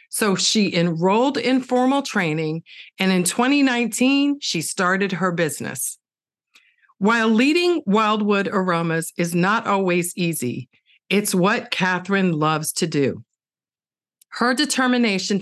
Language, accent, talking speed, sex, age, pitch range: English, American, 115 wpm, female, 50-69, 170-235 Hz